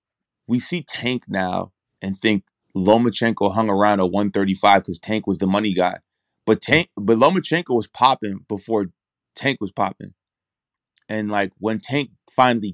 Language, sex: English, male